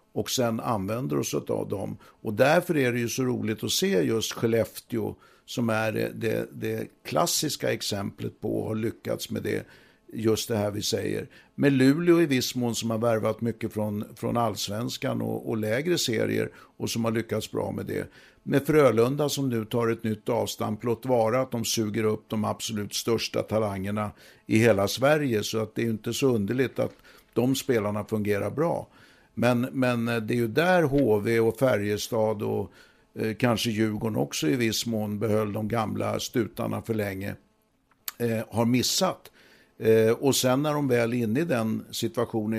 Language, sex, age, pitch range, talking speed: English, male, 60-79, 110-125 Hz, 180 wpm